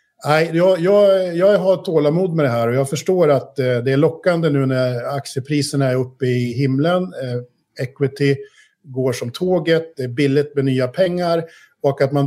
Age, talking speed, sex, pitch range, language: 50-69, 160 wpm, male, 125-150 Hz, Swedish